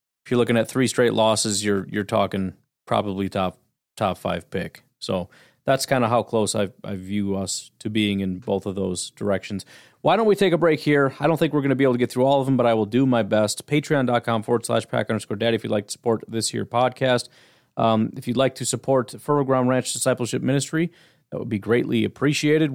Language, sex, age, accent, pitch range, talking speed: English, male, 30-49, American, 110-135 Hz, 235 wpm